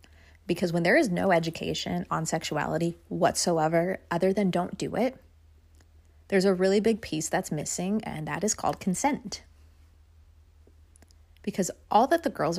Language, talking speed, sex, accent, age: English, 150 wpm, female, American, 30-49